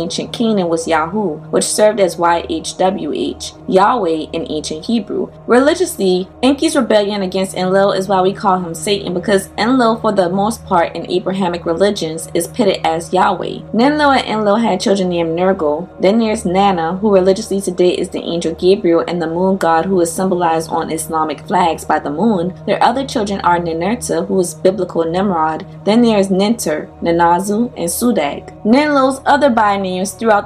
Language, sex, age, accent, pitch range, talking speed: English, female, 20-39, American, 170-215 Hz, 170 wpm